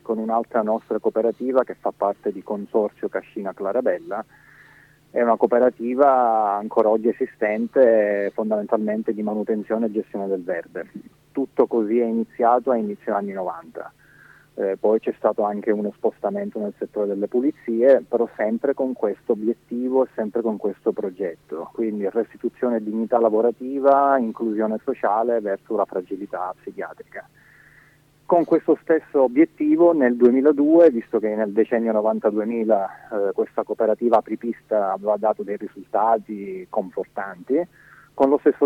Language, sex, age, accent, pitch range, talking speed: Italian, male, 30-49, native, 105-125 Hz, 135 wpm